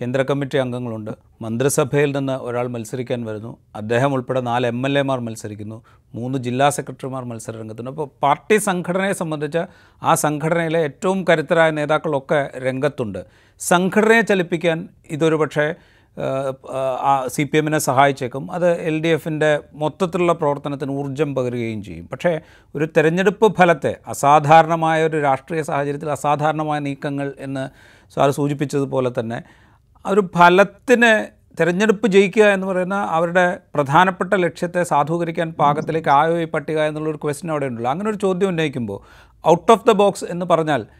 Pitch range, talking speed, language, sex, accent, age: 130-165 Hz, 130 wpm, Malayalam, male, native, 40-59